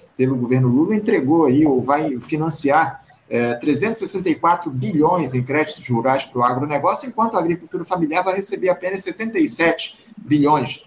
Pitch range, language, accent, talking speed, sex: 130-175 Hz, Portuguese, Brazilian, 145 wpm, male